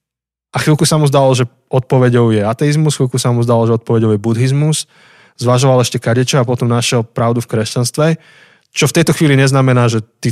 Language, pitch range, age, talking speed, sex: Slovak, 120-145 Hz, 20-39, 190 wpm, male